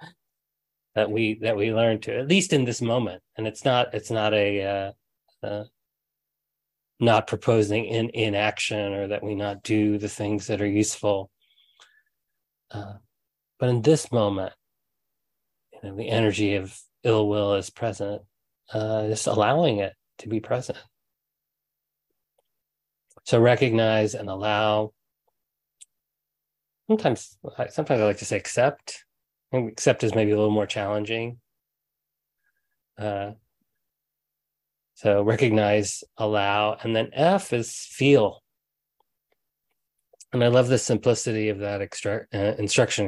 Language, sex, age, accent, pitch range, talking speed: English, male, 30-49, American, 100-115 Hz, 125 wpm